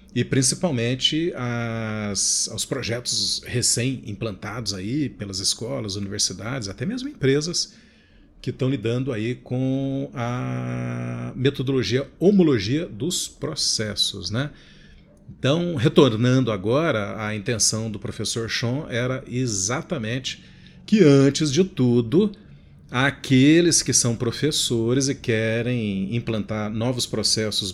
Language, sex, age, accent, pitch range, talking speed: Portuguese, male, 40-59, Brazilian, 115-165 Hz, 100 wpm